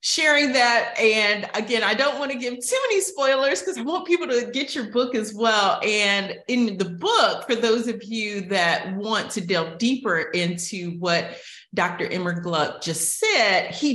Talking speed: 185 wpm